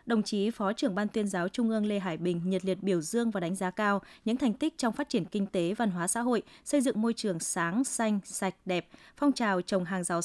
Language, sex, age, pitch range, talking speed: Vietnamese, female, 20-39, 185-235 Hz, 265 wpm